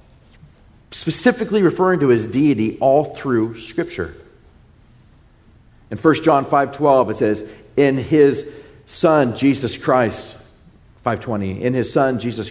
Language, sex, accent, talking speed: English, male, American, 115 wpm